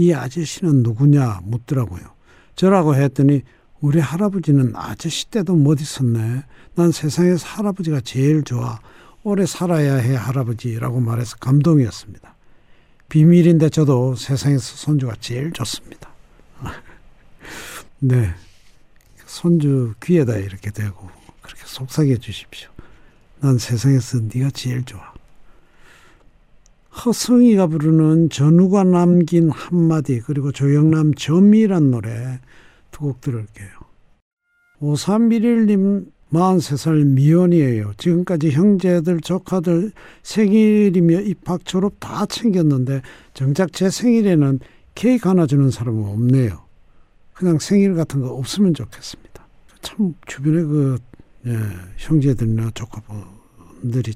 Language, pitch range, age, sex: Korean, 125-175 Hz, 60-79, male